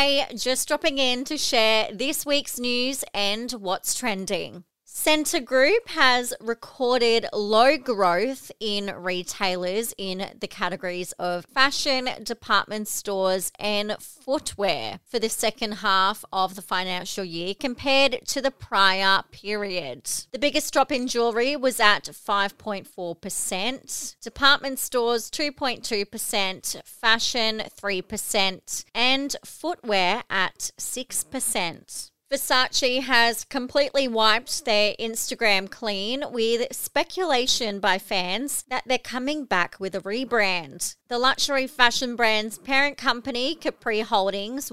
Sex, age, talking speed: female, 30-49, 115 wpm